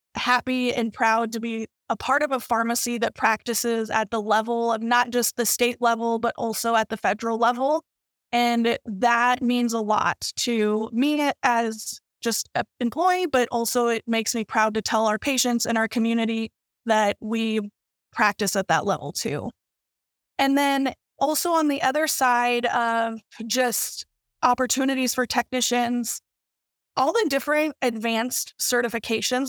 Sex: female